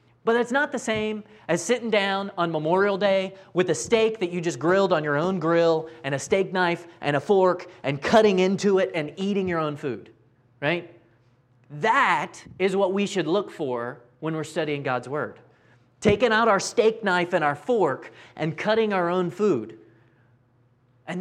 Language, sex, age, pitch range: English, male, 30-49, 130-190 Hz